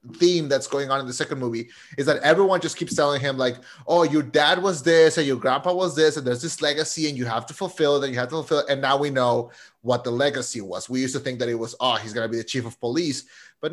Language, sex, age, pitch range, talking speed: English, male, 30-49, 130-170 Hz, 295 wpm